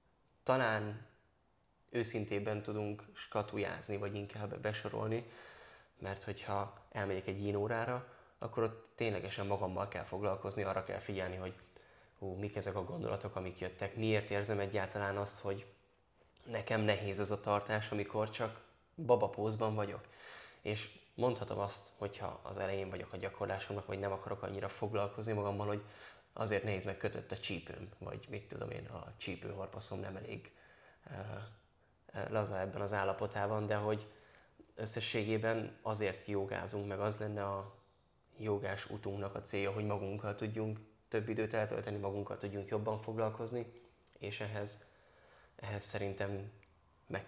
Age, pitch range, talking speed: 20-39, 95-110 Hz, 135 wpm